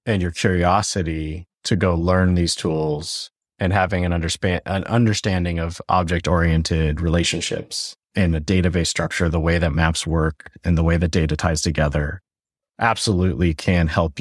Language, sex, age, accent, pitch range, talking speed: English, male, 30-49, American, 85-105 Hz, 155 wpm